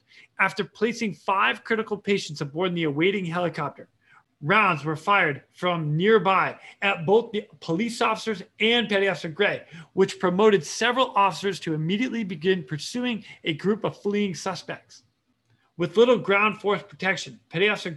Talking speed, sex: 145 wpm, male